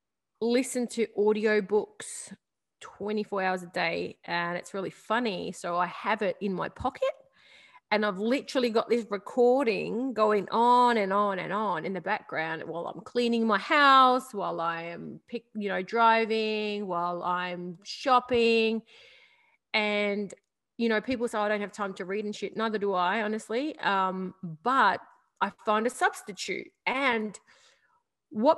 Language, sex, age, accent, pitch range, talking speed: English, female, 30-49, Australian, 195-240 Hz, 150 wpm